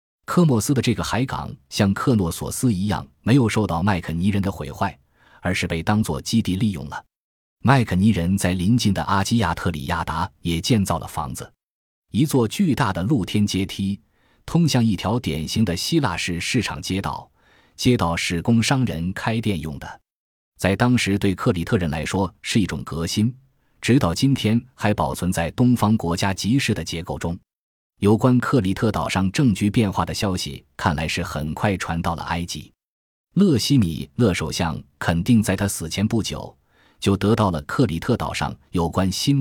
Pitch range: 85-115 Hz